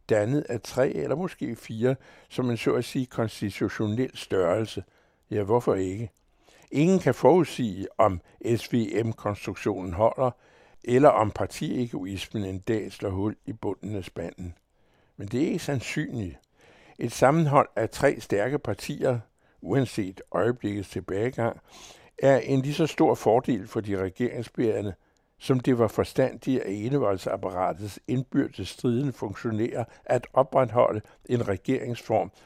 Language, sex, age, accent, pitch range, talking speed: Danish, male, 60-79, American, 100-130 Hz, 130 wpm